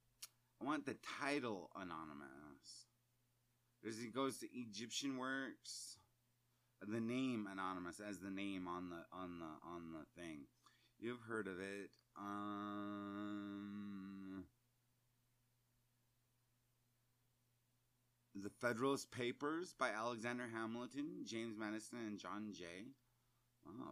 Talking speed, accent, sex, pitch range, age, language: 105 wpm, American, male, 100-120 Hz, 30-49, English